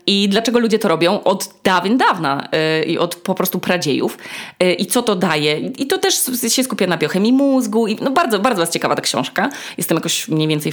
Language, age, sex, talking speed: Polish, 20-39, female, 220 wpm